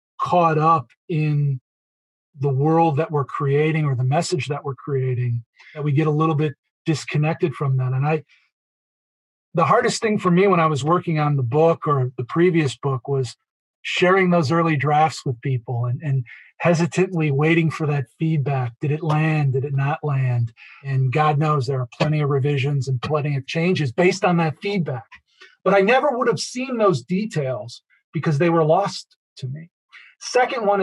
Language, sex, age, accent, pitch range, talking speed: English, male, 40-59, American, 140-175 Hz, 185 wpm